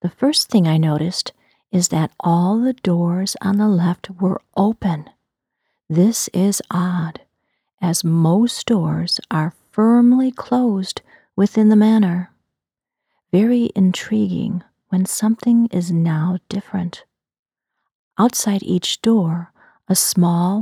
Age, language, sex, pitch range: 40-59, English, female, 180-220 Hz